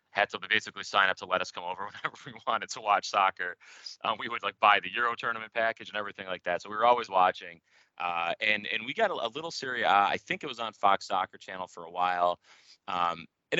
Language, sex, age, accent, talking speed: English, male, 30-49, American, 250 wpm